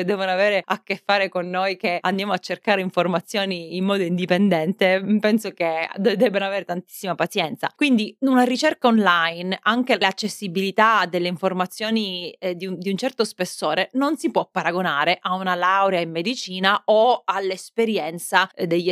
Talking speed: 160 wpm